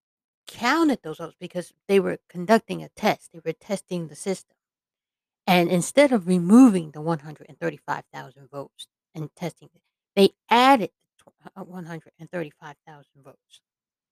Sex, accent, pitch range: female, American, 165-220 Hz